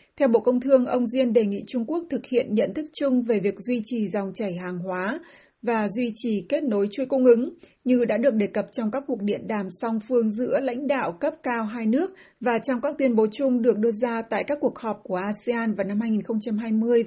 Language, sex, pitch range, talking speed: Vietnamese, female, 210-255 Hz, 240 wpm